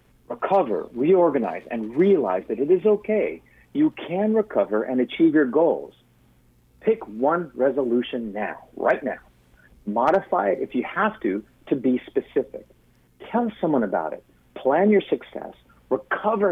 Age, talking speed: 50-69, 140 wpm